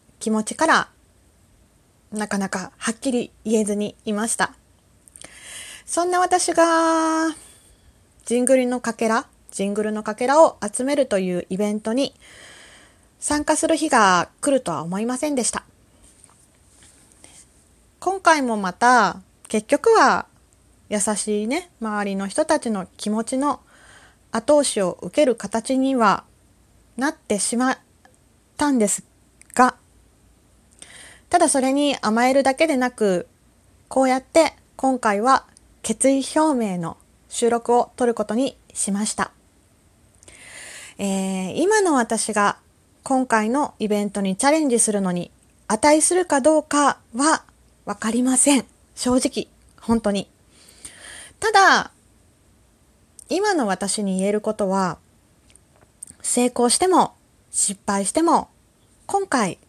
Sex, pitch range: female, 205-285 Hz